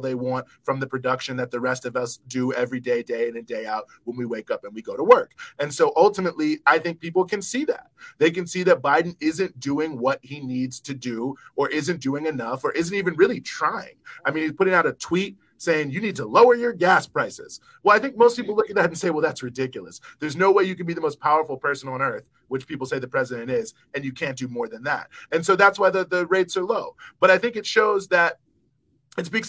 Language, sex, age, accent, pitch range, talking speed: English, male, 30-49, American, 130-200 Hz, 260 wpm